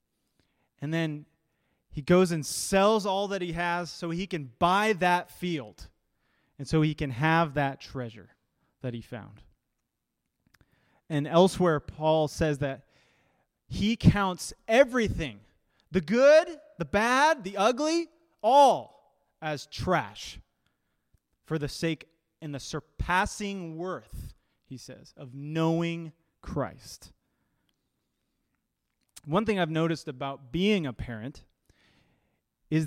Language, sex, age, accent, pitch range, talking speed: English, male, 30-49, American, 145-190 Hz, 115 wpm